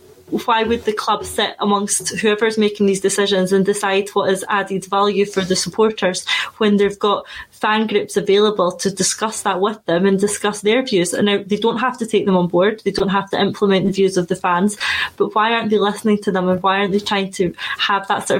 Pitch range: 190-210 Hz